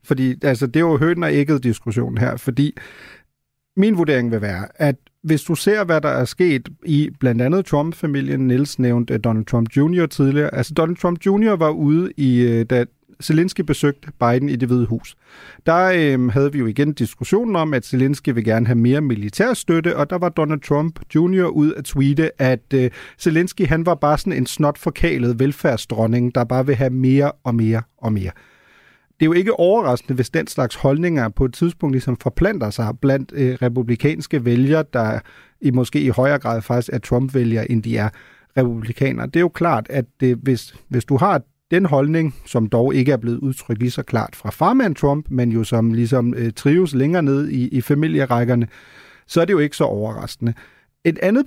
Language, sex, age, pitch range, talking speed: Danish, male, 30-49, 125-155 Hz, 190 wpm